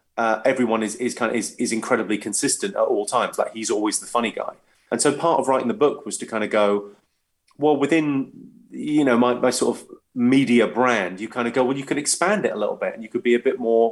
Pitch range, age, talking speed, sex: 105-125 Hz, 30-49, 260 wpm, male